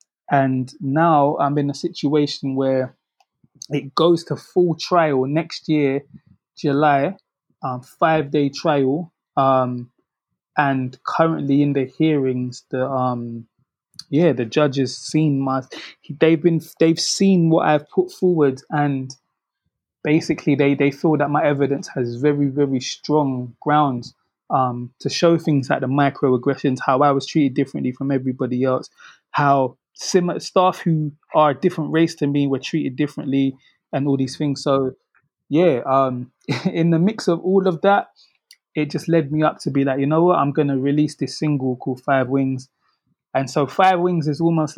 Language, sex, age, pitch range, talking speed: English, male, 20-39, 135-160 Hz, 160 wpm